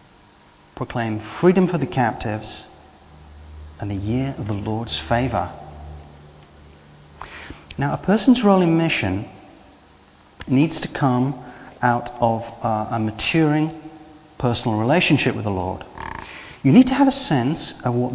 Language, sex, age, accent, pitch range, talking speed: English, male, 40-59, British, 105-155 Hz, 130 wpm